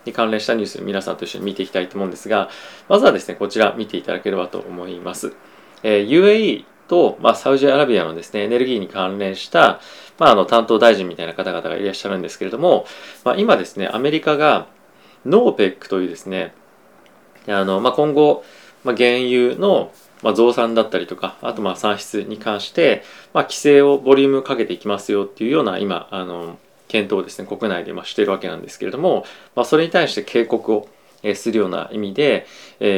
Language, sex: Japanese, male